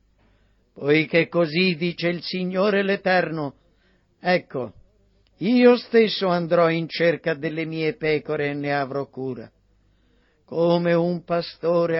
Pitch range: 135-180 Hz